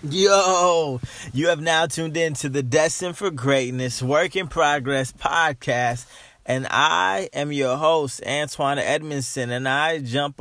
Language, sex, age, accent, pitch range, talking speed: English, male, 20-39, American, 115-145 Hz, 145 wpm